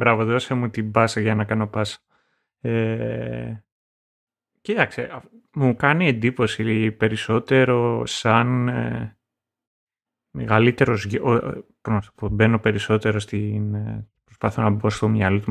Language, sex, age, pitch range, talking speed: Greek, male, 30-49, 105-130 Hz, 110 wpm